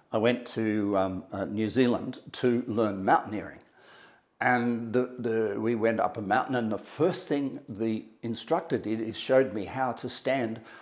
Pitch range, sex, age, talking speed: 110-130 Hz, male, 50-69, 170 wpm